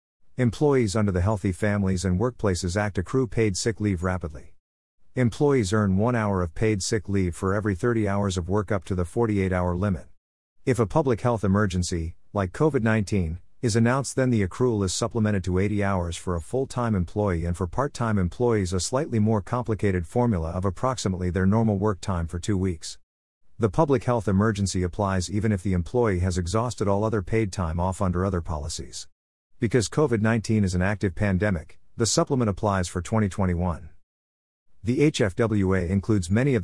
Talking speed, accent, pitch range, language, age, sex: 175 wpm, American, 90-115 Hz, English, 50-69, male